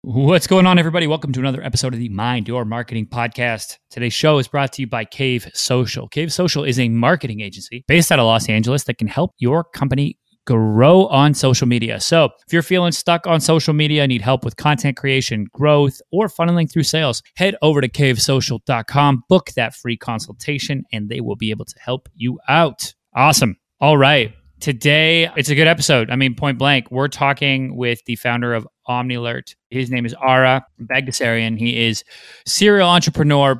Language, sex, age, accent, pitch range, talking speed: English, male, 30-49, American, 120-150 Hz, 190 wpm